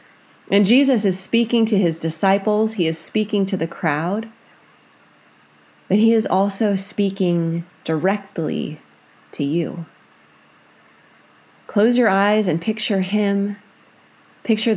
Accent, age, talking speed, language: American, 30-49, 115 wpm, English